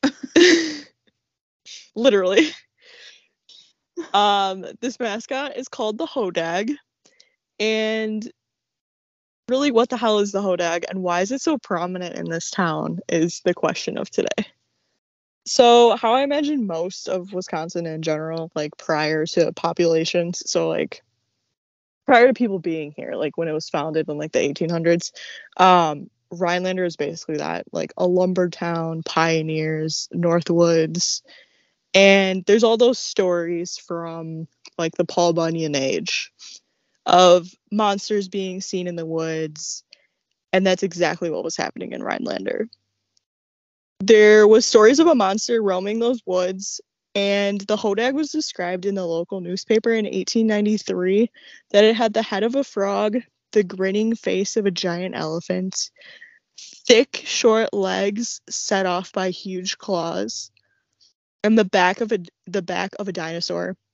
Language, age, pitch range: English, 20-39, 170-220 Hz